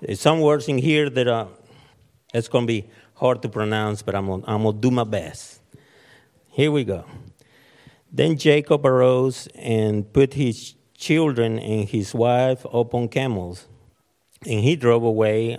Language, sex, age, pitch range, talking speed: English, male, 50-69, 105-130 Hz, 160 wpm